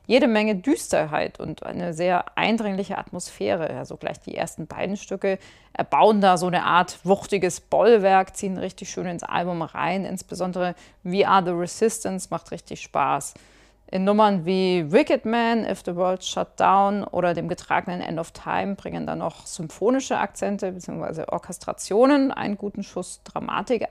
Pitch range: 180-215 Hz